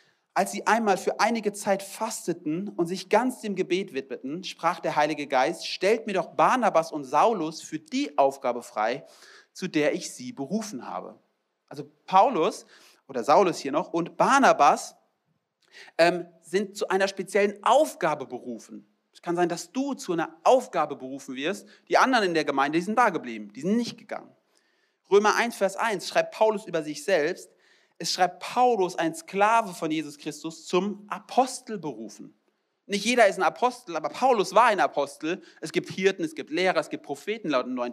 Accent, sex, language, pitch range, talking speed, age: German, male, German, 155-225 Hz, 175 wpm, 40-59